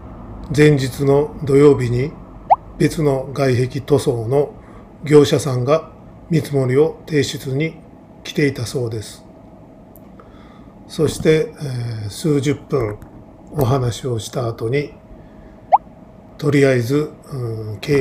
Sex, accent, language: male, native, Japanese